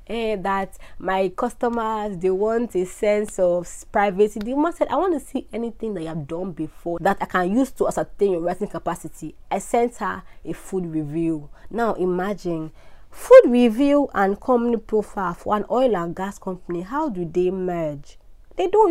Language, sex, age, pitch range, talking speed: English, female, 30-49, 170-215 Hz, 180 wpm